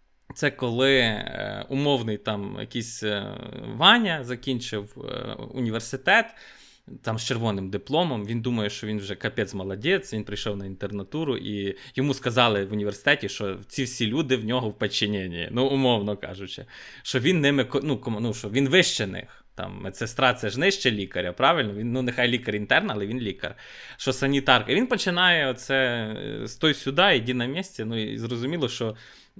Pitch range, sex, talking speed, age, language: 105-140 Hz, male, 165 wpm, 20-39, Ukrainian